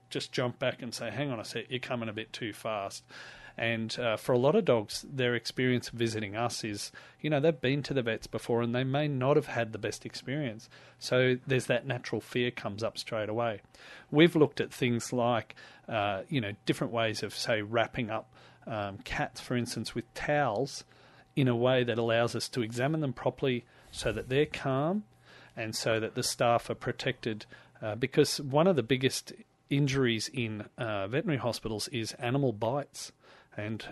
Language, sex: English, male